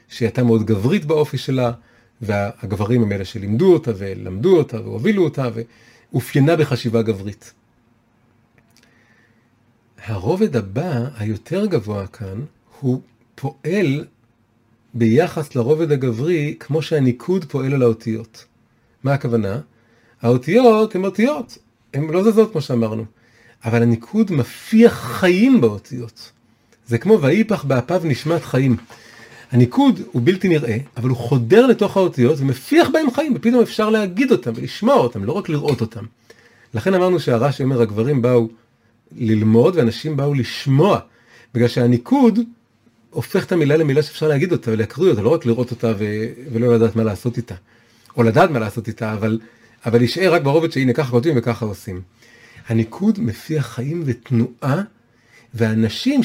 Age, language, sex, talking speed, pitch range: 40-59, Hebrew, male, 135 wpm, 115-155 Hz